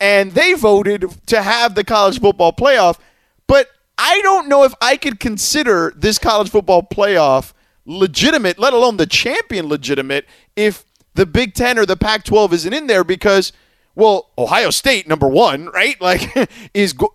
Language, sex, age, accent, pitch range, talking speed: English, male, 30-49, American, 185-270 Hz, 160 wpm